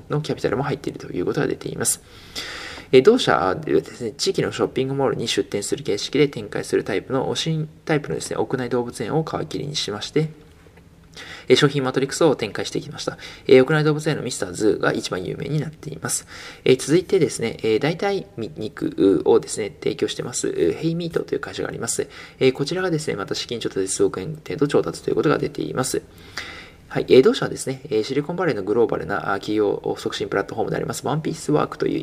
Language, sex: Japanese, male